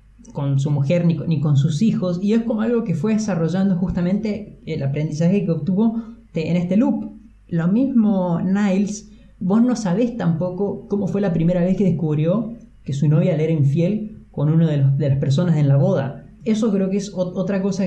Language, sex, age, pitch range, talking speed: Spanish, male, 20-39, 150-190 Hz, 190 wpm